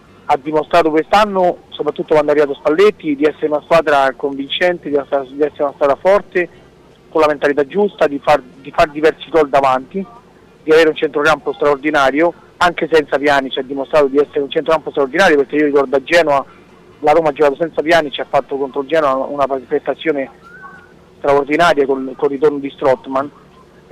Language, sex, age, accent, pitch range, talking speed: Italian, male, 40-59, native, 140-160 Hz, 180 wpm